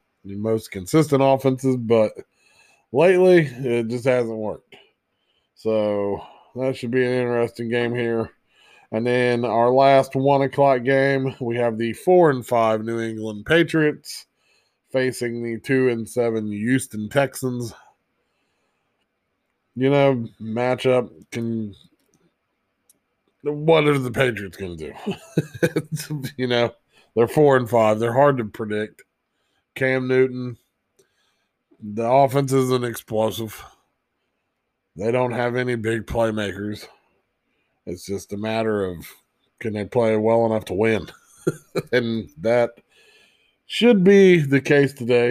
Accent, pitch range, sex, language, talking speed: American, 110-135 Hz, male, English, 125 wpm